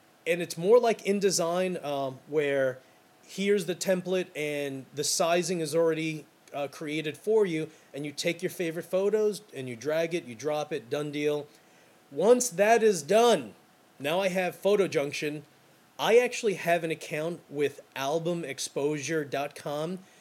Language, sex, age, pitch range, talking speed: English, male, 30-49, 140-180 Hz, 150 wpm